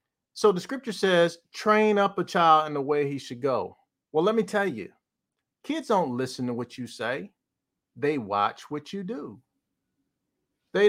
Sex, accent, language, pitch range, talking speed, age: male, American, English, 160-195 Hz, 175 wpm, 50-69